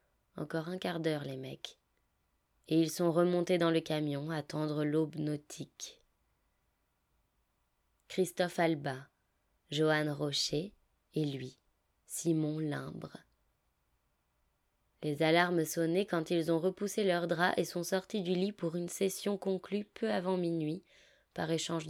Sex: female